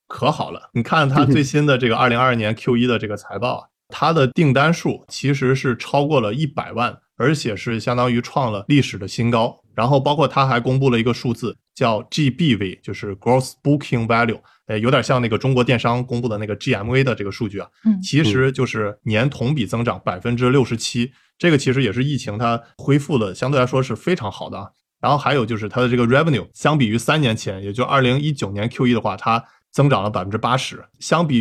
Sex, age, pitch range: male, 20-39, 110-135 Hz